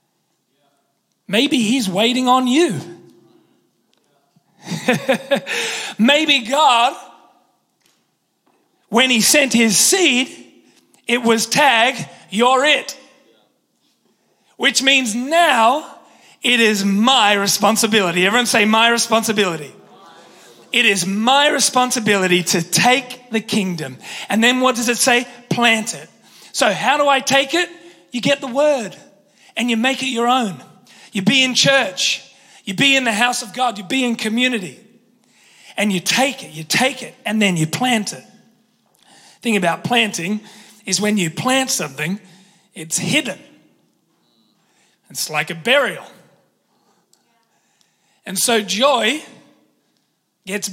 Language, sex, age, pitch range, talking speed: English, male, 30-49, 200-260 Hz, 125 wpm